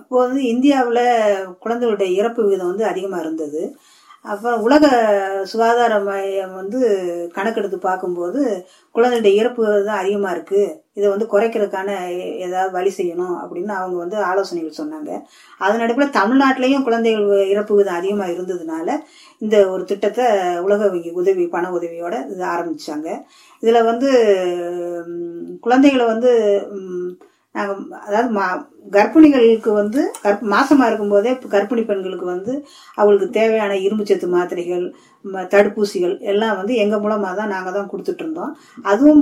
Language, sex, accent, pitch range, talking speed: Tamil, female, native, 195-255 Hz, 120 wpm